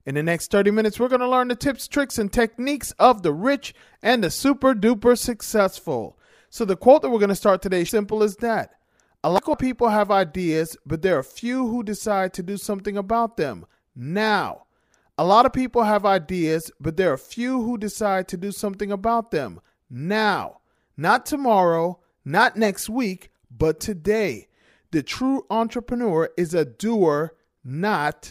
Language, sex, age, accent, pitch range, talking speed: English, male, 40-59, American, 165-215 Hz, 175 wpm